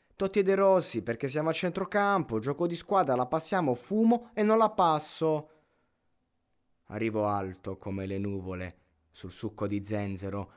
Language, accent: Italian, native